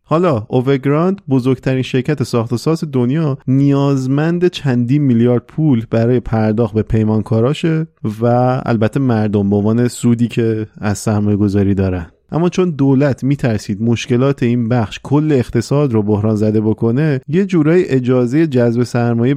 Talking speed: 135 wpm